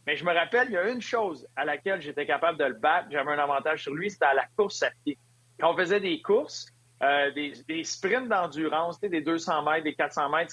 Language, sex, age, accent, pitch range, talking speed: French, male, 40-59, Canadian, 130-180 Hz, 245 wpm